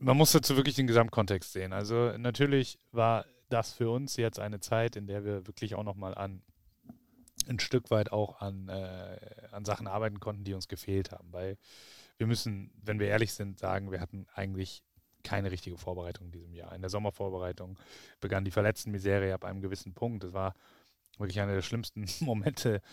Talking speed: 185 wpm